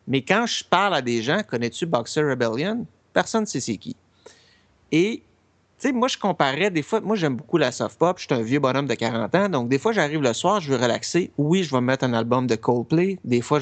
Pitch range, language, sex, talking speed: 125-175 Hz, French, male, 245 wpm